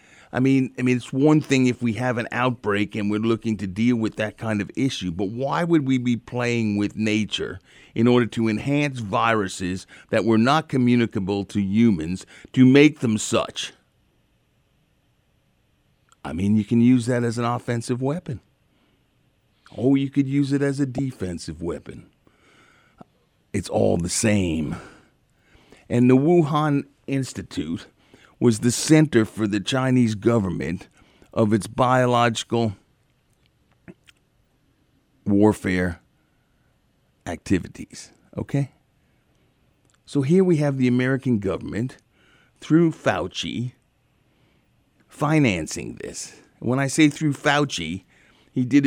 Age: 50-69